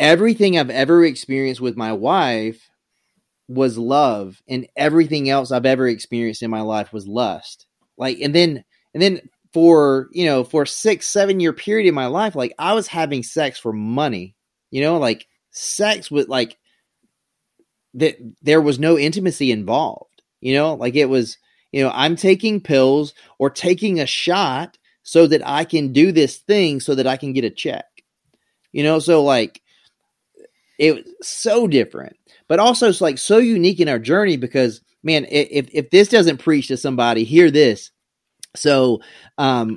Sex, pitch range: male, 125-165 Hz